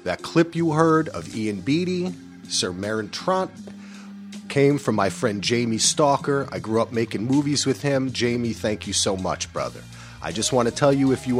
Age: 40-59